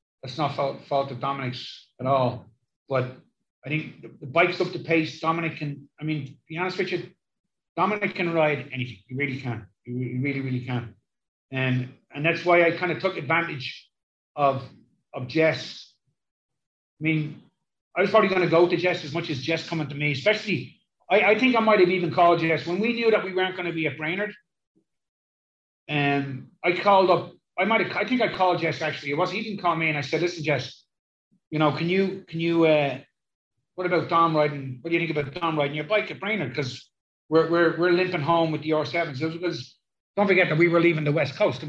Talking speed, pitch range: 225 wpm, 130-175 Hz